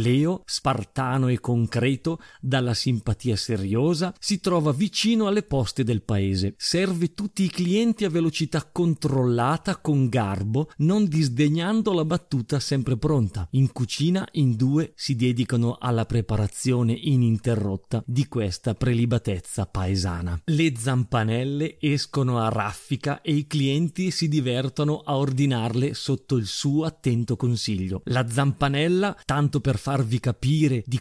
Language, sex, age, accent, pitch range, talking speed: Italian, male, 40-59, native, 120-165 Hz, 130 wpm